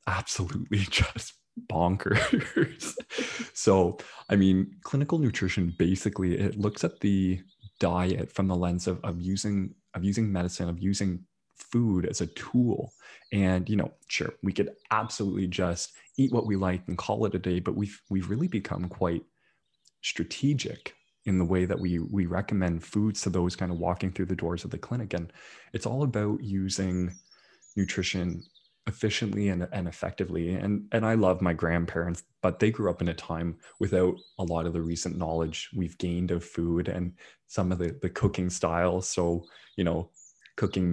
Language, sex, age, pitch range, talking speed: English, male, 20-39, 90-105 Hz, 170 wpm